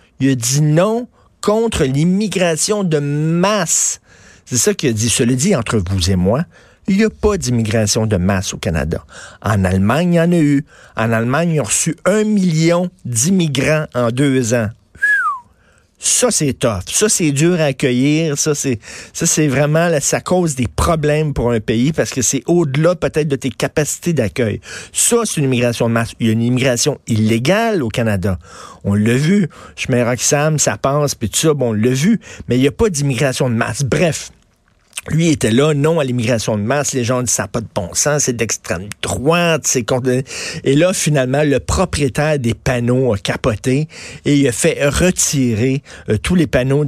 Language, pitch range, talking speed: French, 120-160 Hz, 195 wpm